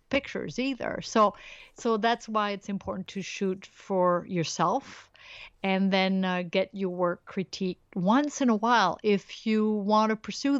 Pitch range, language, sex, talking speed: 185-220 Hz, English, female, 160 wpm